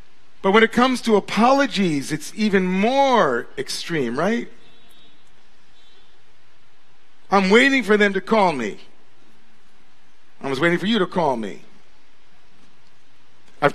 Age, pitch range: 50-69, 170-225 Hz